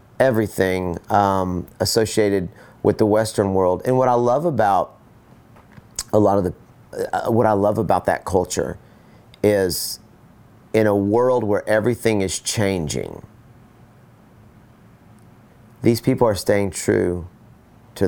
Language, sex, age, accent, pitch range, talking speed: English, male, 40-59, American, 85-110 Hz, 125 wpm